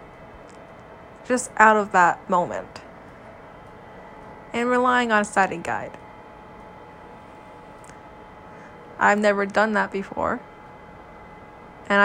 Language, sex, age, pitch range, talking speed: English, female, 20-39, 175-210 Hz, 85 wpm